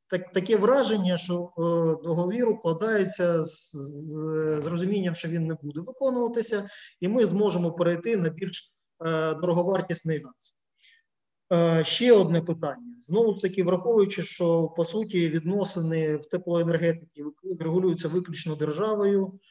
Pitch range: 155-190 Hz